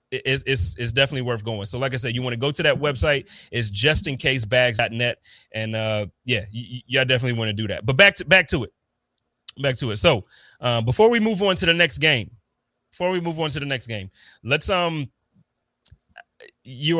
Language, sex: English, male